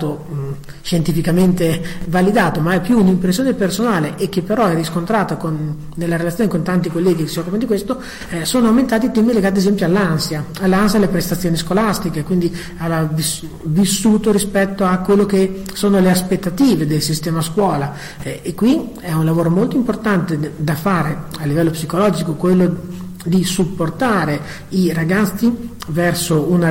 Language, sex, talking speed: Italian, male, 150 wpm